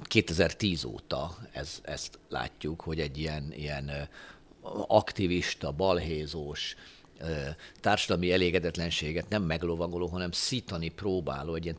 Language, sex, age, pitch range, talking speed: Hungarian, male, 50-69, 80-100 Hz, 100 wpm